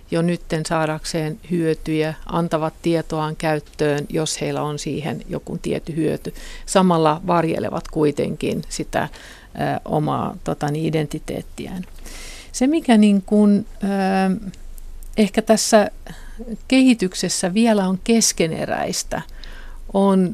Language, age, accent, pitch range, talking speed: Finnish, 60-79, native, 165-210 Hz, 105 wpm